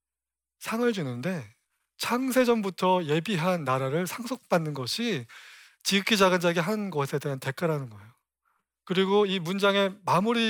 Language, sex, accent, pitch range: Korean, male, native, 140-205 Hz